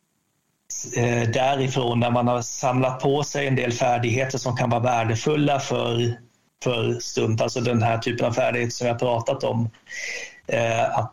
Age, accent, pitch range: 30-49, native, 120-130 Hz